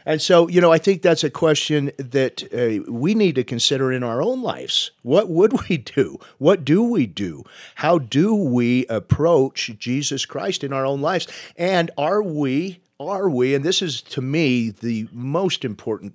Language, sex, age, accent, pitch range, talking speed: English, male, 40-59, American, 105-140 Hz, 185 wpm